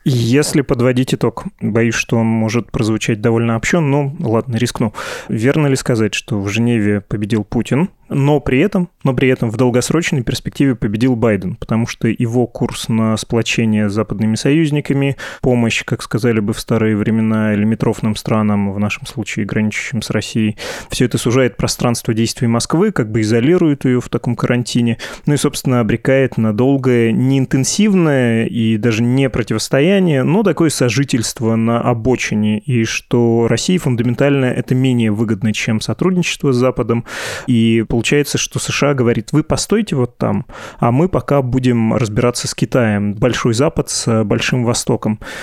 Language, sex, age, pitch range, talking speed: Russian, male, 20-39, 115-135 Hz, 155 wpm